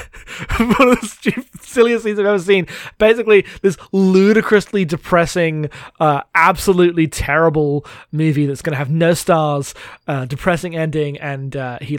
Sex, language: male, English